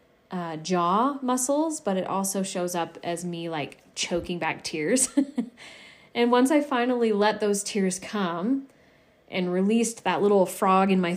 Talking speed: 155 wpm